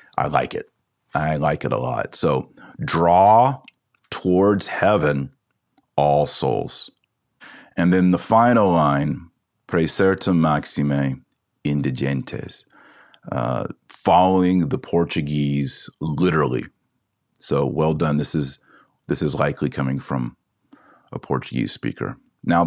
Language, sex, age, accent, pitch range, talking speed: English, male, 30-49, American, 75-95 Hz, 110 wpm